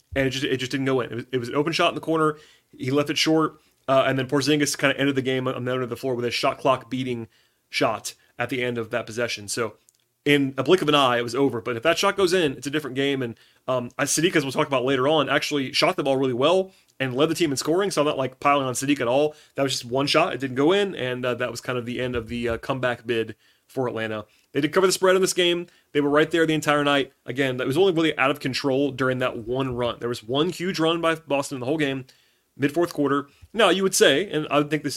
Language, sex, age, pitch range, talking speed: English, male, 30-49, 130-155 Hz, 295 wpm